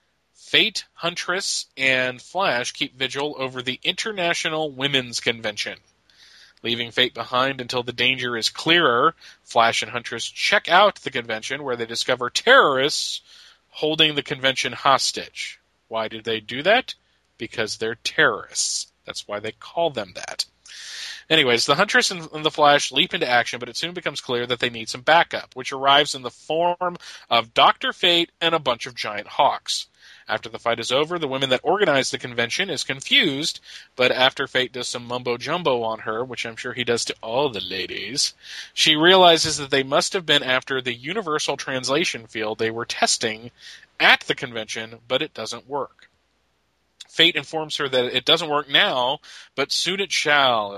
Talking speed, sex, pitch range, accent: 170 wpm, male, 120-160 Hz, American